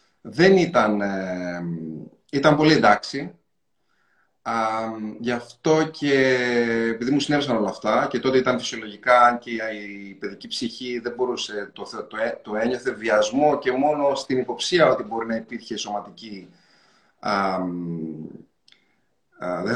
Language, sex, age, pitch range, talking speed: Greek, male, 30-49, 105-140 Hz, 115 wpm